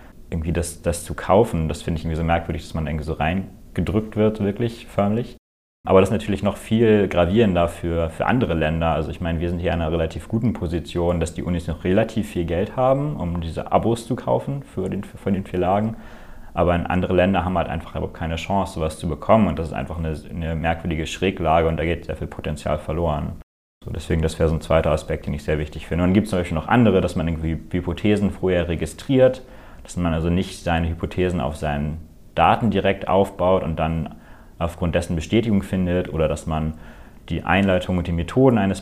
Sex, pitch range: male, 80-95 Hz